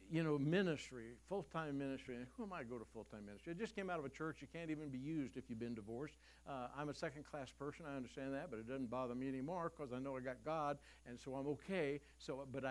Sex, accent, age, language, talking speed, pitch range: male, American, 60-79, English, 265 wpm, 135-195 Hz